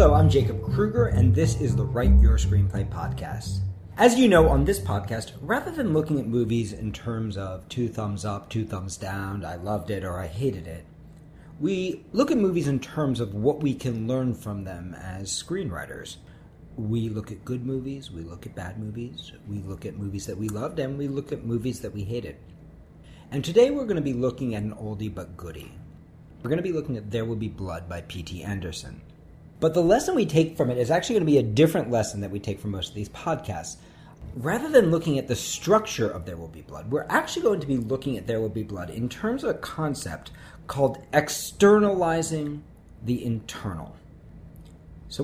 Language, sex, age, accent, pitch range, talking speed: English, male, 40-59, American, 95-145 Hz, 210 wpm